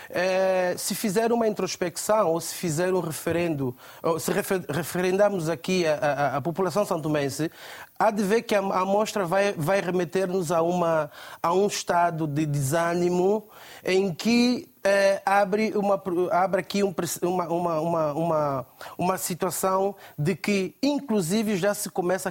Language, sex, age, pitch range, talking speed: Portuguese, male, 30-49, 165-210 Hz, 135 wpm